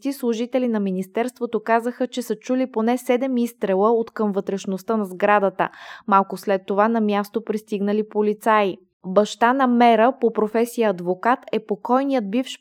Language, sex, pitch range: Bulgarian, female, 195-230 Hz